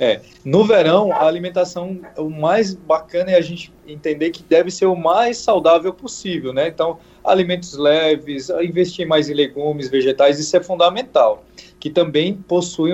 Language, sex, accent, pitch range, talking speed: Portuguese, male, Brazilian, 145-180 Hz, 160 wpm